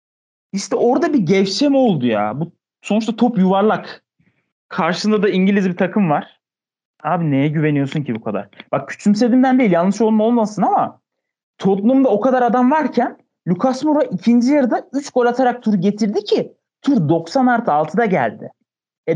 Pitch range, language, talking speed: 170-245 Hz, Turkish, 155 wpm